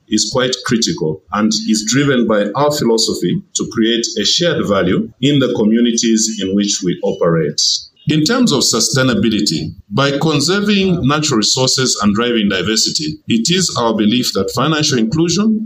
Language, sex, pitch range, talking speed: English, male, 105-150 Hz, 150 wpm